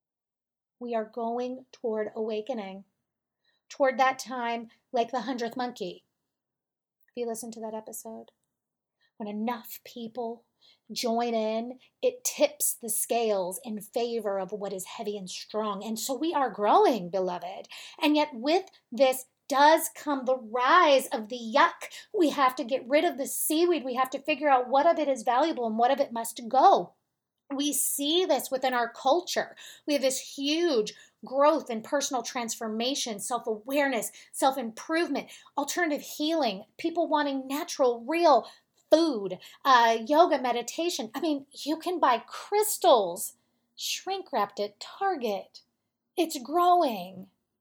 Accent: American